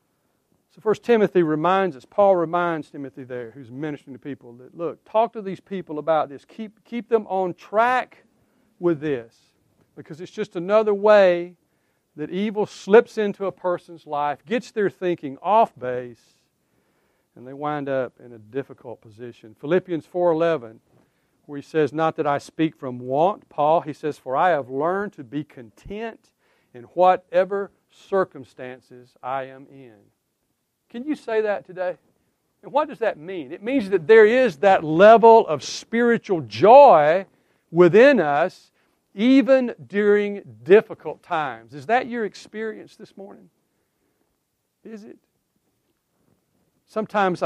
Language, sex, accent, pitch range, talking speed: English, male, American, 145-205 Hz, 145 wpm